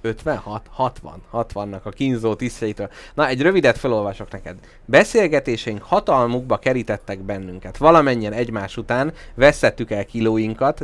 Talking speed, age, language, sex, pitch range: 120 wpm, 30-49, Hungarian, male, 105-140 Hz